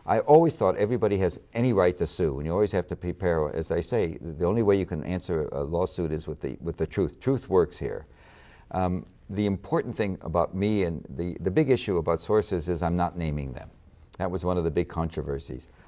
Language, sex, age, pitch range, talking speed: English, male, 60-79, 80-95 Hz, 225 wpm